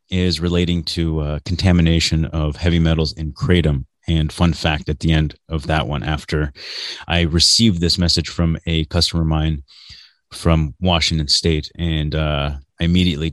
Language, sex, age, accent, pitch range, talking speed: English, male, 30-49, American, 80-90 Hz, 160 wpm